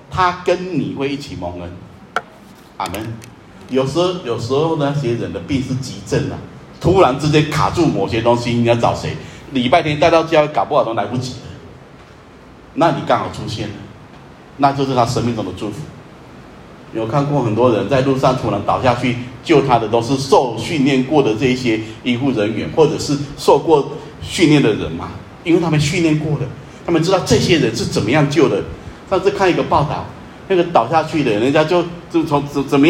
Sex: male